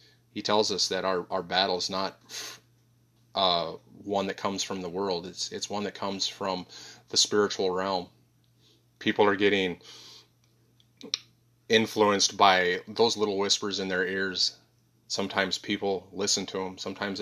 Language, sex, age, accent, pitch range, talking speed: English, male, 30-49, American, 95-110 Hz, 145 wpm